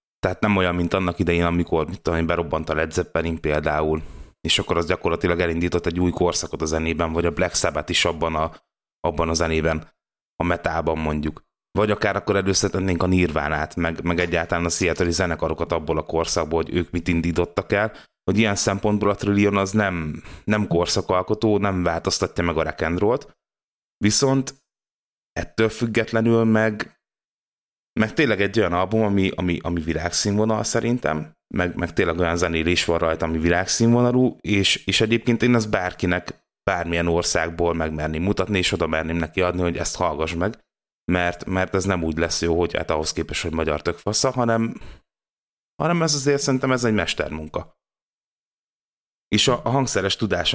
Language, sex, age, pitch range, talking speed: Hungarian, male, 20-39, 85-105 Hz, 165 wpm